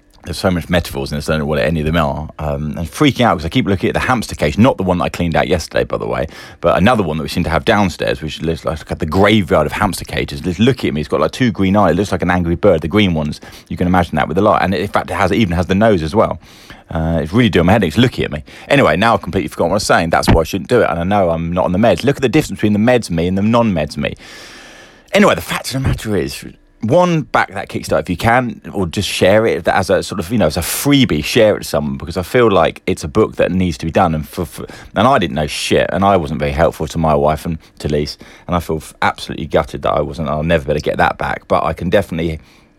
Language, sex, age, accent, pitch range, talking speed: English, male, 30-49, British, 80-100 Hz, 305 wpm